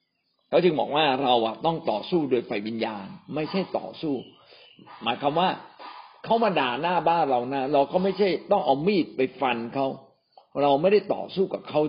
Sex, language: male, Thai